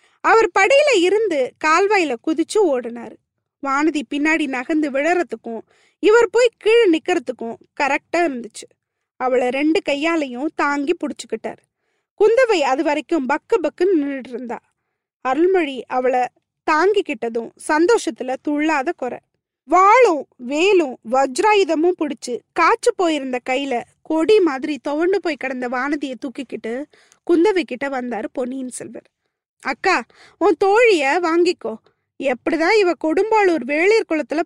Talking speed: 110 wpm